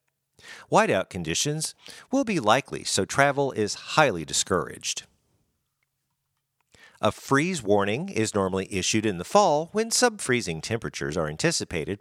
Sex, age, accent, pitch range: male, 50-69, American, 100-155 Hz